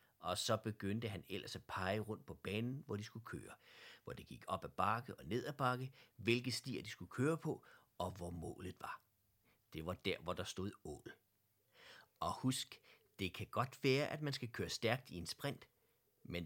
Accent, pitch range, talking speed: native, 95-120 Hz, 205 wpm